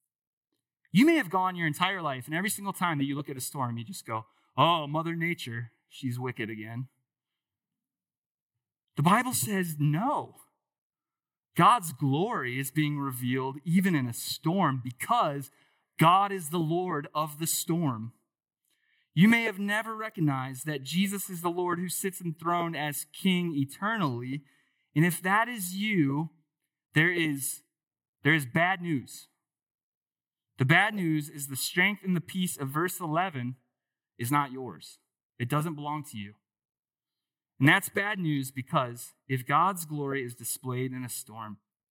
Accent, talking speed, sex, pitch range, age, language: American, 150 wpm, male, 125-170 Hz, 30-49, English